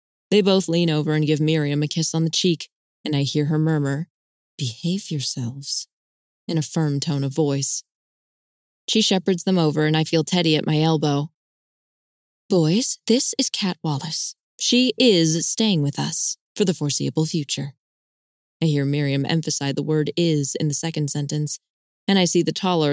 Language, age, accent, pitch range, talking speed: English, 20-39, American, 150-180 Hz, 175 wpm